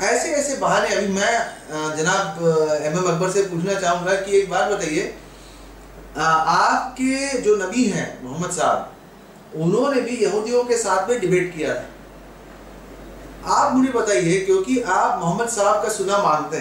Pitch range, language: 175-240 Hz, Hindi